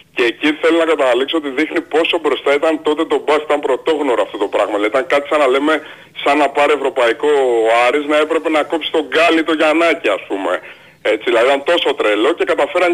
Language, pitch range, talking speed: Greek, 120-175 Hz, 220 wpm